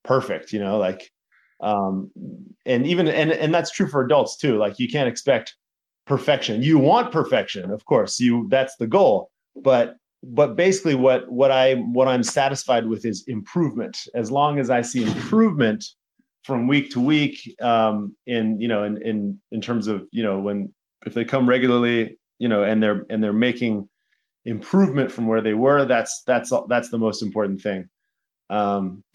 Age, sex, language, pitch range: 30-49, male, English, 110-140 Hz